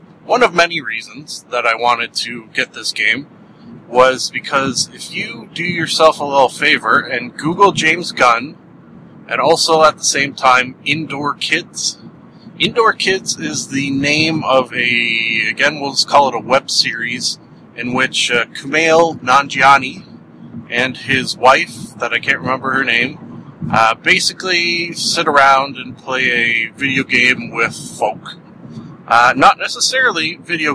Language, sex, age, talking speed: English, male, 30-49, 150 wpm